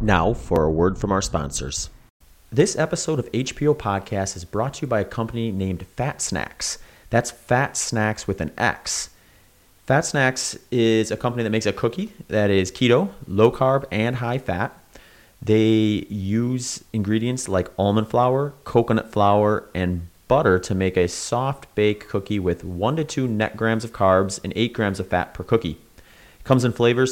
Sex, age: male, 30-49